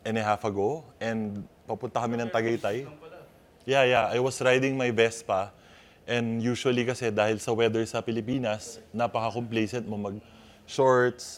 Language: Filipino